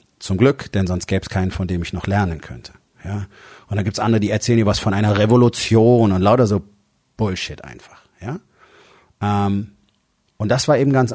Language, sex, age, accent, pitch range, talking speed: German, male, 40-59, German, 95-110 Hz, 205 wpm